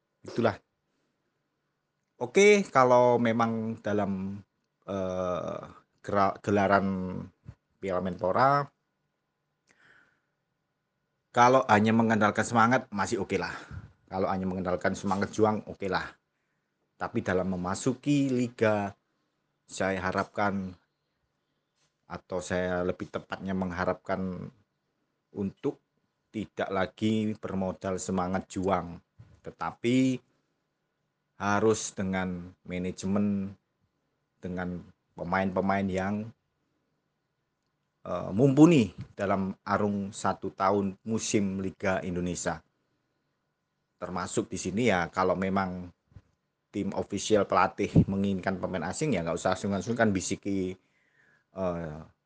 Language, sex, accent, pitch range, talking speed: Indonesian, male, native, 90-105 Hz, 85 wpm